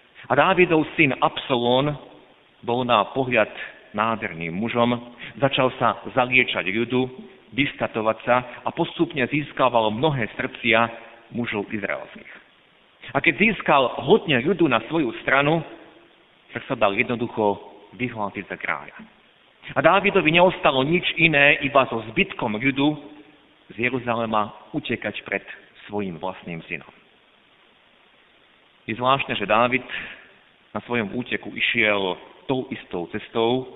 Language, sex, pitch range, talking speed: Slovak, male, 110-140 Hz, 115 wpm